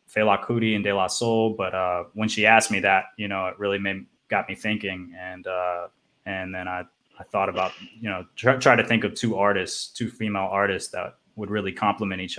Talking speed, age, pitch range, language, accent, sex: 225 wpm, 20-39, 95-105 Hz, English, American, male